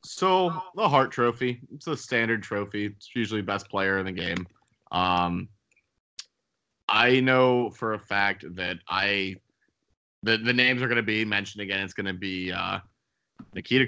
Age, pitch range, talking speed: 30-49, 95-115 Hz, 165 wpm